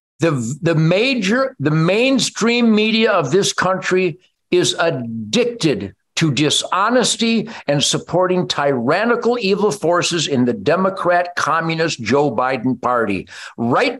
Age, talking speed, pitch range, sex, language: 50-69, 110 wpm, 165-230 Hz, male, English